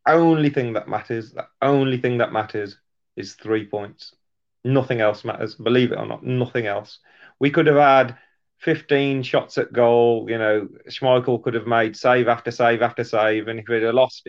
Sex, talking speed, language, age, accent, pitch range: male, 190 wpm, English, 30-49, British, 110-135 Hz